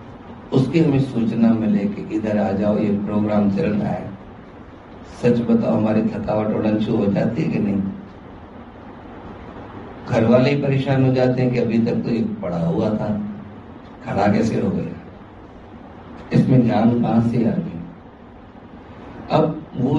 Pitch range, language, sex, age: 110-140 Hz, Hindi, male, 50-69